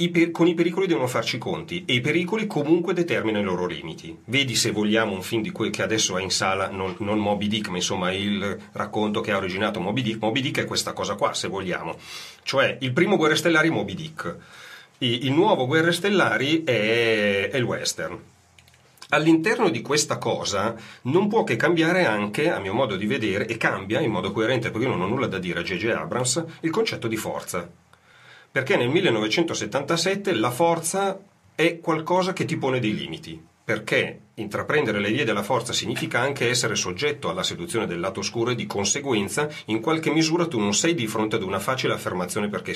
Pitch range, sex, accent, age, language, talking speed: 110-170 Hz, male, native, 40-59, Italian, 200 wpm